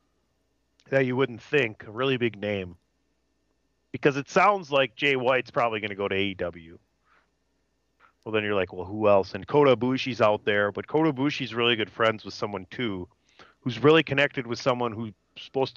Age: 40-59